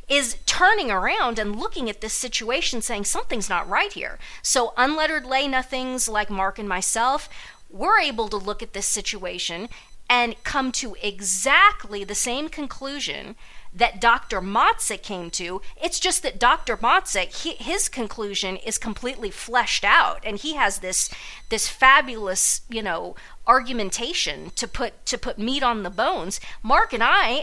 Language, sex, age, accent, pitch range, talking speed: English, female, 40-59, American, 220-285 Hz, 155 wpm